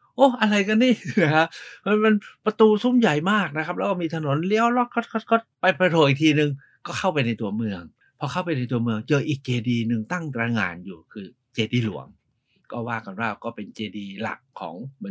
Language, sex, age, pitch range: Thai, male, 60-79, 115-155 Hz